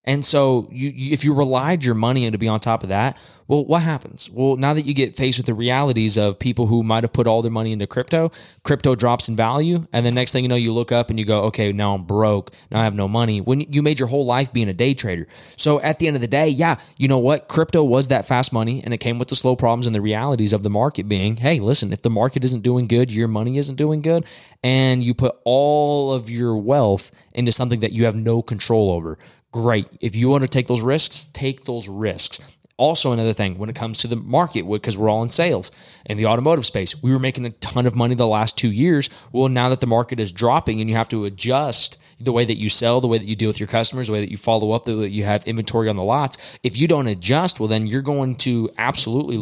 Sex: male